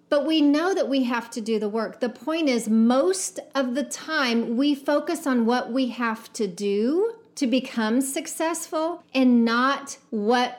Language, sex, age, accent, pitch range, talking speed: English, female, 40-59, American, 230-290 Hz, 175 wpm